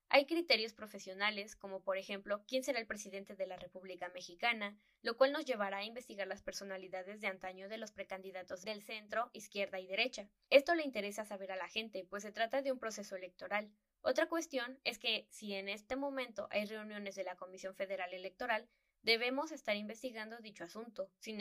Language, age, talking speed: Spanish, 10-29, 190 wpm